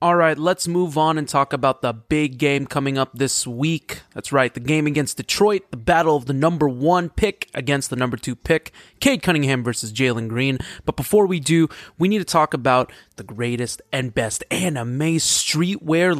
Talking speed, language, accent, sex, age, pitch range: 195 wpm, English, American, male, 20-39, 125-165 Hz